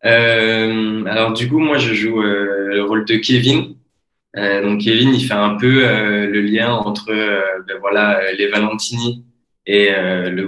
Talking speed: 180 wpm